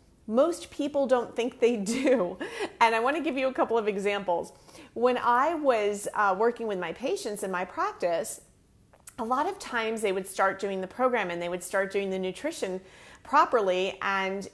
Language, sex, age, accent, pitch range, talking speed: English, female, 40-59, American, 195-290 Hz, 190 wpm